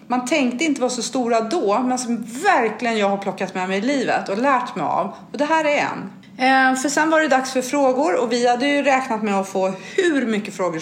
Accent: native